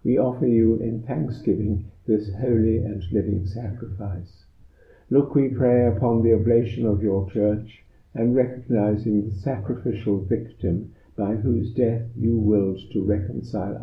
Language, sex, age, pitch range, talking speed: English, male, 60-79, 100-115 Hz, 135 wpm